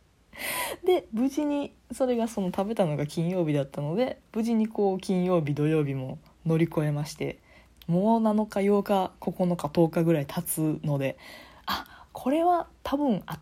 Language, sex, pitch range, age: Japanese, female, 160-220 Hz, 20-39